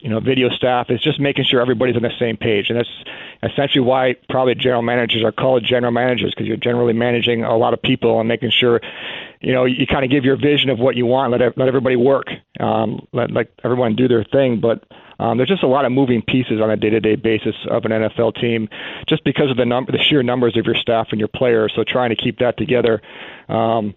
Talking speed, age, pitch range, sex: 240 wpm, 40-59, 115-130 Hz, male